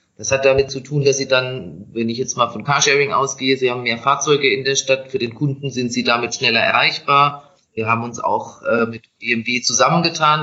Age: 30-49